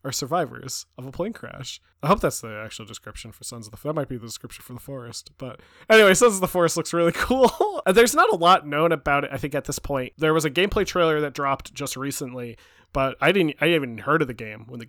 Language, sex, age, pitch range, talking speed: English, male, 20-39, 125-160 Hz, 265 wpm